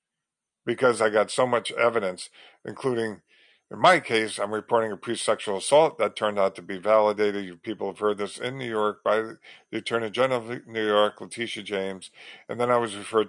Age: 50-69